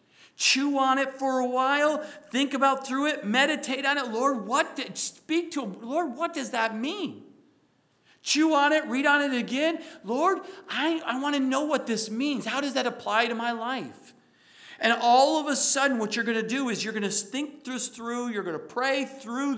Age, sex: 50-69, male